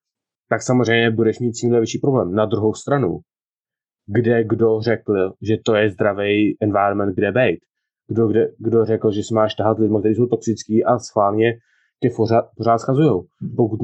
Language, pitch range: Czech, 110-125 Hz